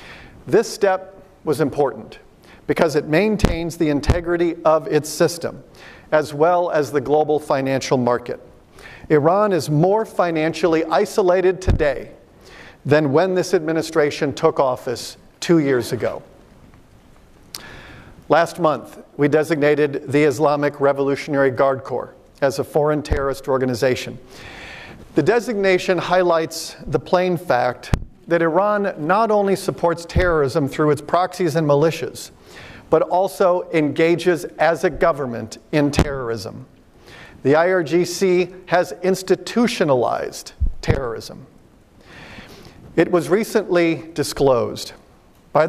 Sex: male